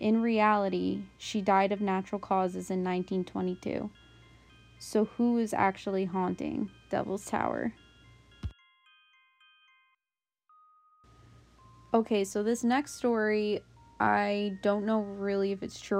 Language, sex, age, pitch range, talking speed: English, female, 20-39, 180-215 Hz, 105 wpm